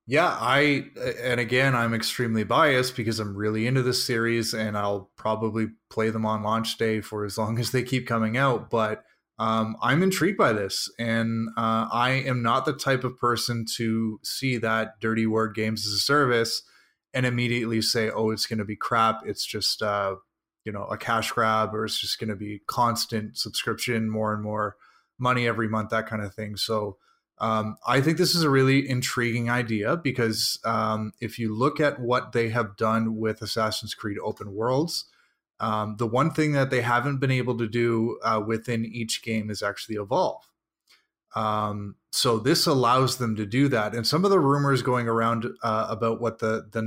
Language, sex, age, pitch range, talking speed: English, male, 20-39, 110-125 Hz, 195 wpm